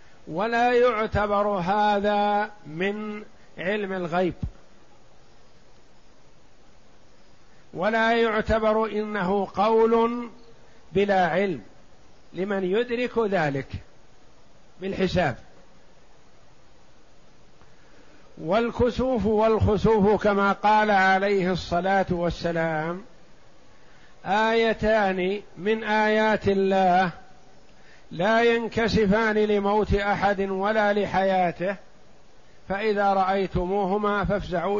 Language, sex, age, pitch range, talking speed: Arabic, male, 50-69, 185-215 Hz, 60 wpm